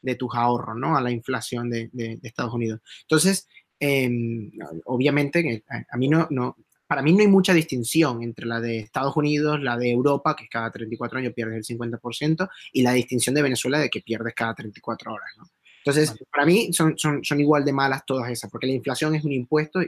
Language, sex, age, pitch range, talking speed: Spanish, male, 20-39, 120-155 Hz, 210 wpm